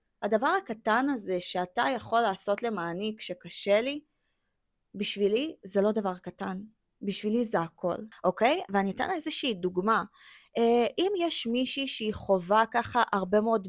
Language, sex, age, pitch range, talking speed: Hebrew, female, 20-39, 195-255 Hz, 140 wpm